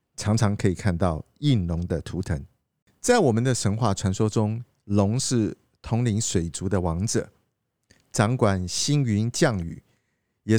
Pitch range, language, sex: 95-130 Hz, Chinese, male